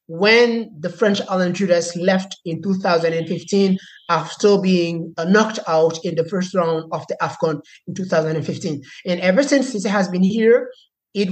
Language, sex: English, male